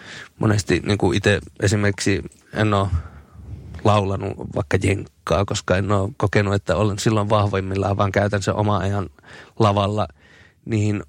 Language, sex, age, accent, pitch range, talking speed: Finnish, male, 30-49, native, 95-110 Hz, 130 wpm